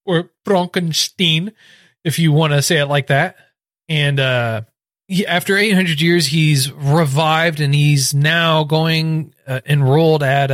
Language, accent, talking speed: English, American, 135 wpm